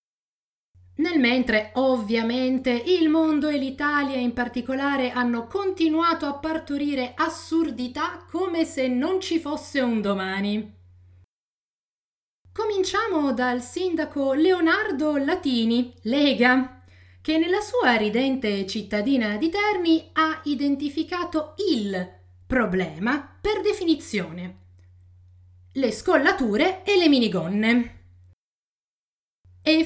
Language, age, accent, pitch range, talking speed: Italian, 30-49, native, 235-315 Hz, 90 wpm